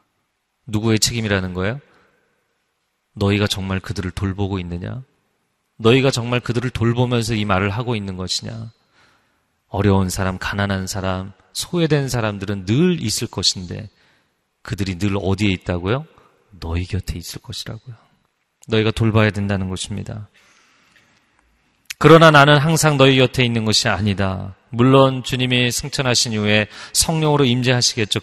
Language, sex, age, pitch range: Korean, male, 30-49, 100-130 Hz